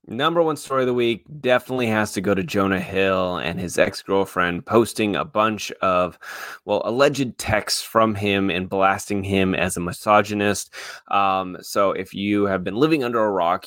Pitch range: 95-110 Hz